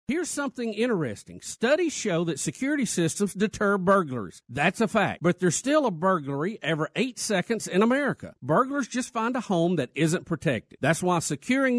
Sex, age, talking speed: male, 50-69, 175 wpm